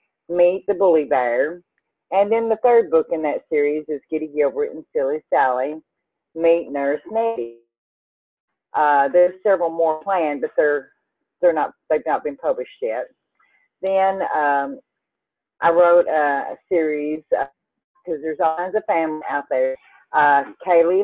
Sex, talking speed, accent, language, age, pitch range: female, 150 wpm, American, English, 40-59, 150-205 Hz